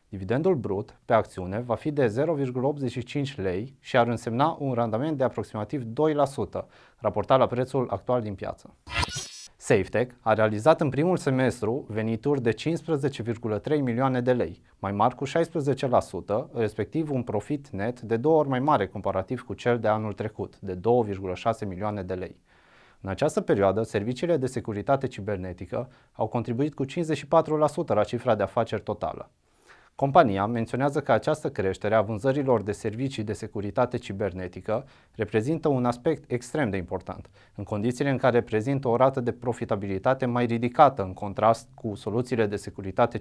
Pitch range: 105-135 Hz